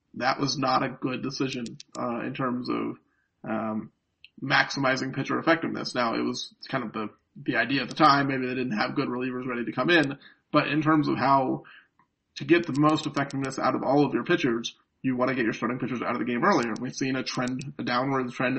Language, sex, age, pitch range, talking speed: English, male, 30-49, 120-140 Hz, 225 wpm